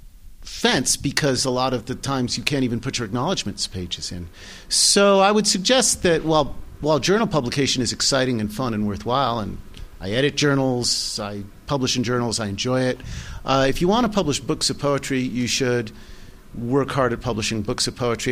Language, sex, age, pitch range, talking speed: English, male, 50-69, 105-135 Hz, 195 wpm